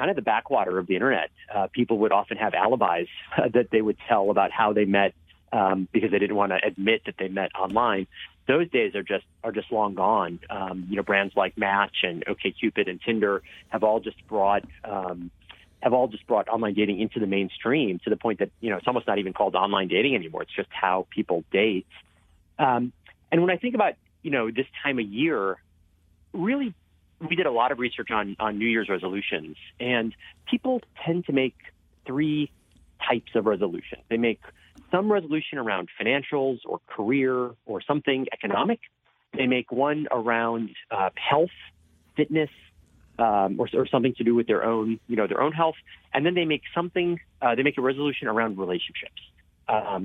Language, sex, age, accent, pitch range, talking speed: English, male, 30-49, American, 95-135 Hz, 195 wpm